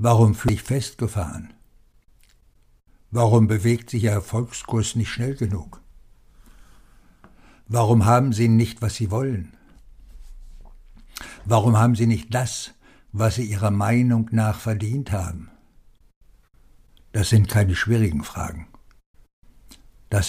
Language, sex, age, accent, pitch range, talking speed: German, male, 60-79, German, 105-120 Hz, 105 wpm